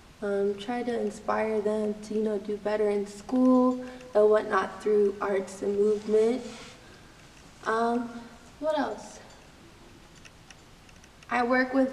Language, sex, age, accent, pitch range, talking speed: English, female, 20-39, American, 200-230 Hz, 120 wpm